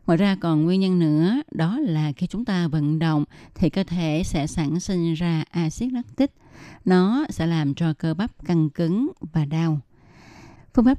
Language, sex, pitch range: Vietnamese, female, 155-200 Hz